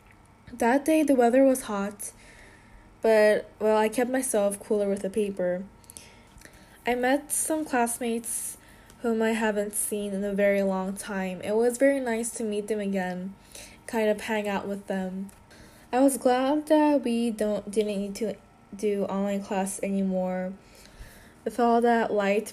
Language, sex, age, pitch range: Korean, female, 10-29, 200-235 Hz